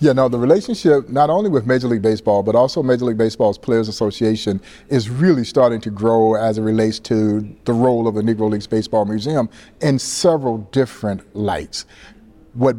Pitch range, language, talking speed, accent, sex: 110-150 Hz, English, 190 wpm, American, male